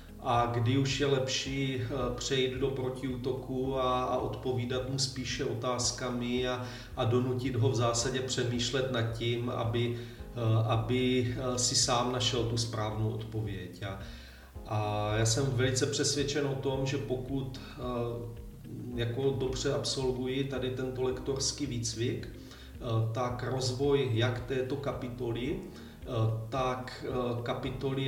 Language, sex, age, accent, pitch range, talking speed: Czech, male, 40-59, native, 115-130 Hz, 115 wpm